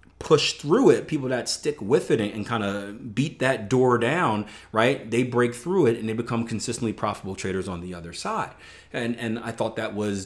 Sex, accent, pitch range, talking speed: male, American, 90-110 Hz, 210 wpm